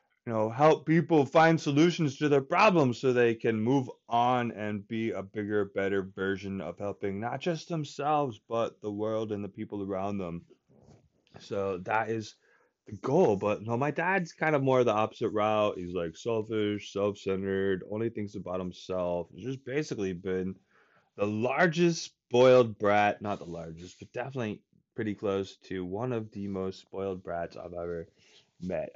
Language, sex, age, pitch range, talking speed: English, male, 20-39, 95-120 Hz, 170 wpm